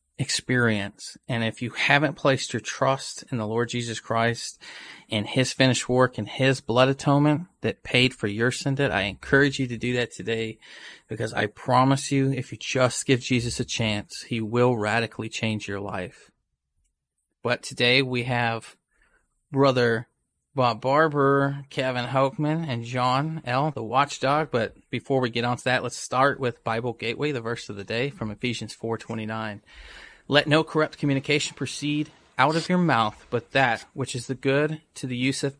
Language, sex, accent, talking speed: English, male, American, 175 wpm